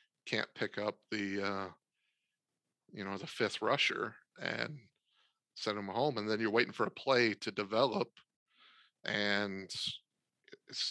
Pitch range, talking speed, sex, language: 100-120 Hz, 140 wpm, male, English